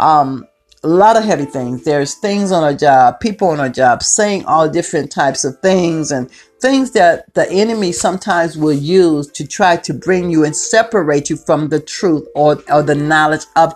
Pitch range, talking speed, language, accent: 145-195 Hz, 195 wpm, English, American